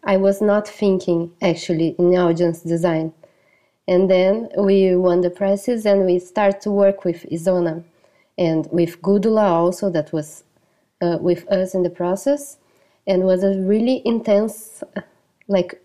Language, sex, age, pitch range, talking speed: English, female, 20-39, 180-205 Hz, 150 wpm